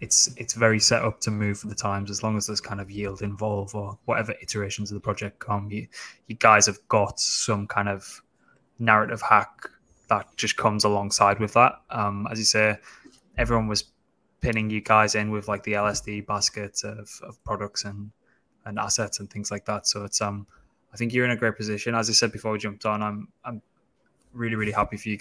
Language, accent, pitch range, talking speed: English, British, 105-115 Hz, 215 wpm